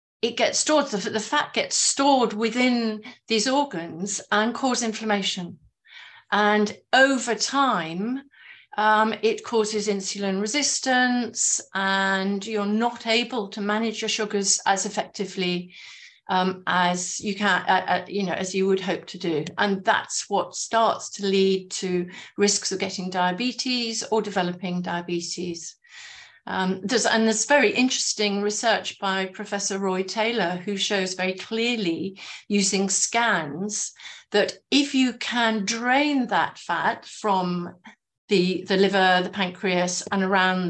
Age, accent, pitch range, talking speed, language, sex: 50-69, British, 190-230 Hz, 135 wpm, English, female